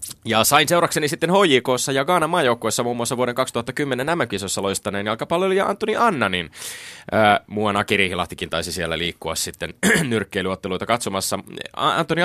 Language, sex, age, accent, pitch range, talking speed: Finnish, male, 20-39, native, 90-130 Hz, 140 wpm